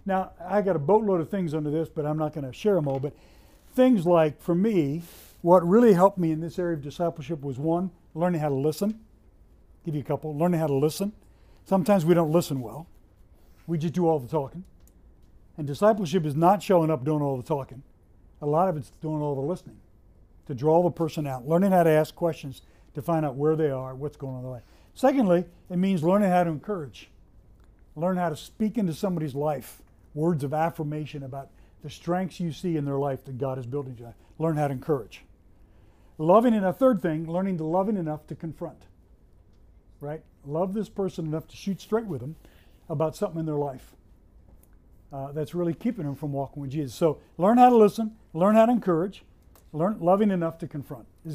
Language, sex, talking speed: English, male, 210 wpm